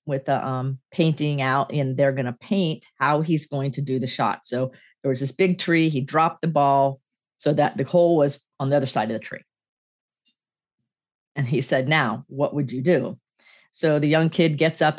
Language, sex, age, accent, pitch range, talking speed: English, female, 40-59, American, 130-155 Hz, 210 wpm